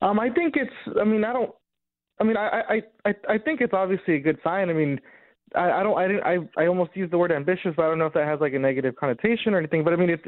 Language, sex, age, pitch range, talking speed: English, male, 20-39, 135-165 Hz, 300 wpm